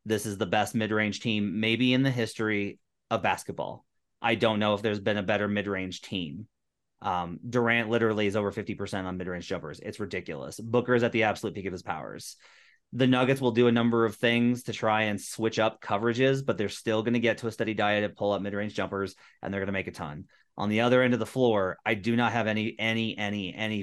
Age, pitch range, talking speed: 30-49, 105-125 Hz, 235 wpm